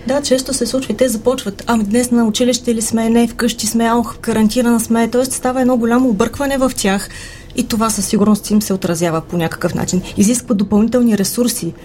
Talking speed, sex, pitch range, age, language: 200 wpm, female, 190-230 Hz, 30-49, Bulgarian